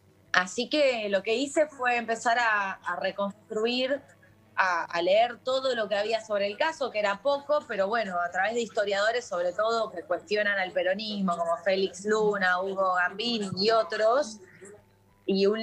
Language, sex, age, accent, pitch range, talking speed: Spanish, female, 20-39, Argentinian, 200-260 Hz, 170 wpm